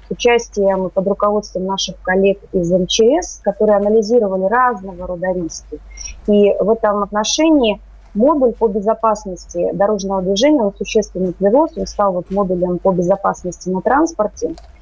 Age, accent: 30-49, native